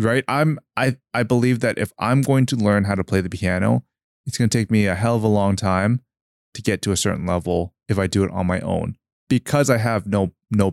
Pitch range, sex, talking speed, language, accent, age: 100-120 Hz, male, 250 wpm, English, American, 20-39